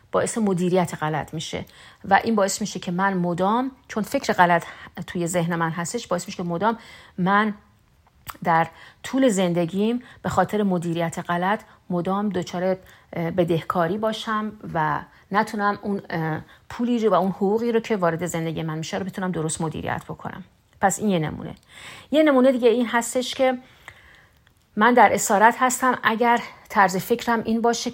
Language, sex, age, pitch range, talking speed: Persian, female, 40-59, 175-220 Hz, 155 wpm